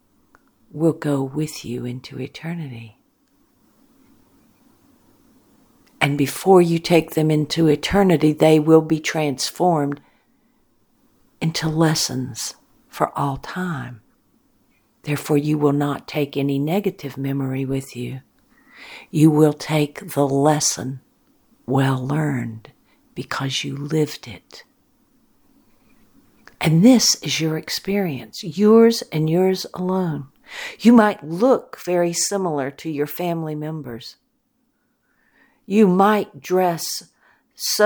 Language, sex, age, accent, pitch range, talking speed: English, female, 60-79, American, 140-200 Hz, 105 wpm